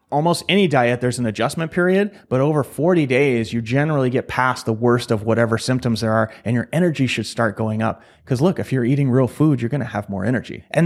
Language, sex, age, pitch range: English, male, 30-49, 120-160 Hz